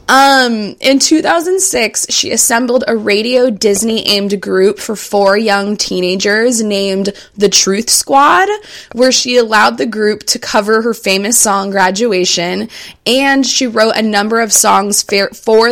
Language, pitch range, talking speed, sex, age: English, 195-240 Hz, 135 wpm, female, 20-39